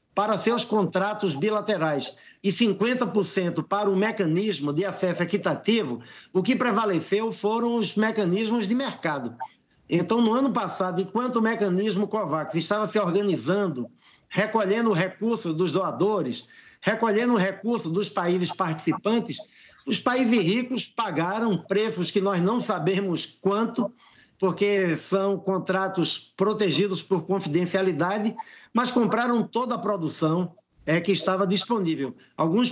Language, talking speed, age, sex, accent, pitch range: Portuguese, 125 wpm, 60-79, male, Brazilian, 180-220 Hz